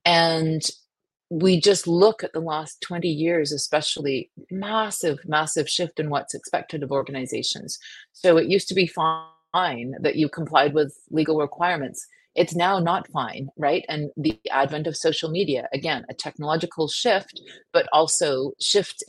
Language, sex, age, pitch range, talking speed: English, female, 30-49, 145-180 Hz, 150 wpm